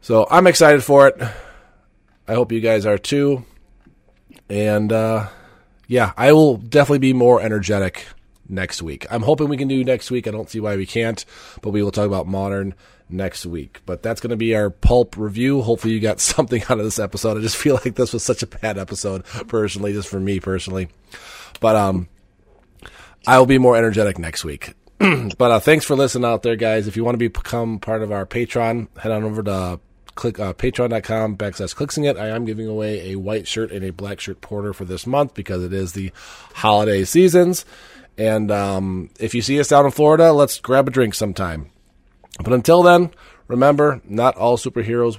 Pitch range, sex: 100-125 Hz, male